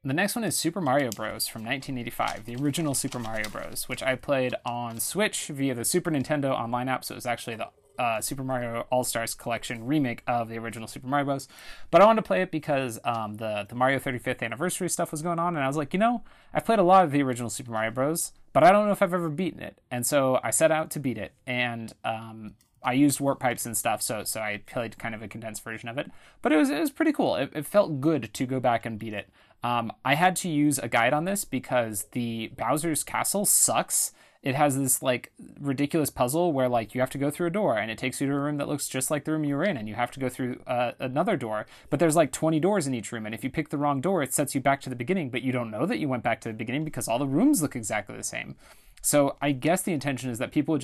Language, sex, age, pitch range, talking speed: English, male, 30-49, 120-155 Hz, 275 wpm